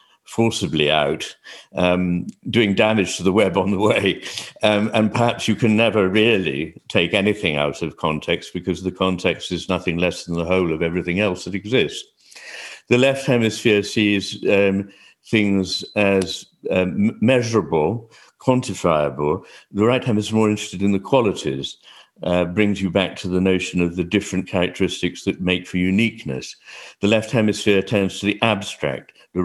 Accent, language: British, English